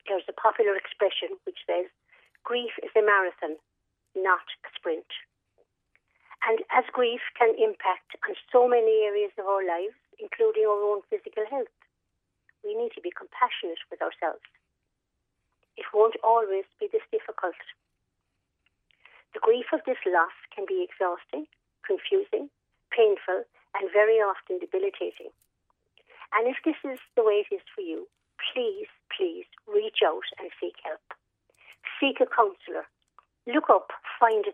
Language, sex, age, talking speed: English, female, 50-69, 140 wpm